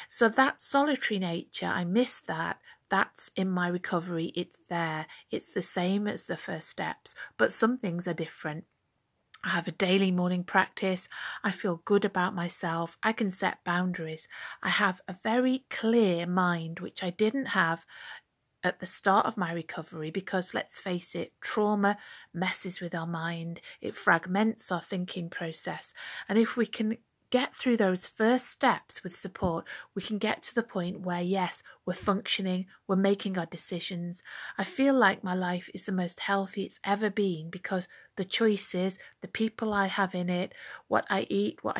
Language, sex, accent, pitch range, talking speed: English, female, British, 180-215 Hz, 170 wpm